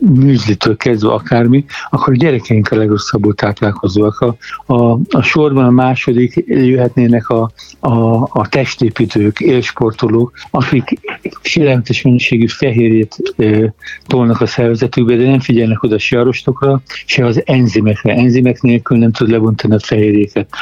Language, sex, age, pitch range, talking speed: Hungarian, male, 60-79, 110-130 Hz, 140 wpm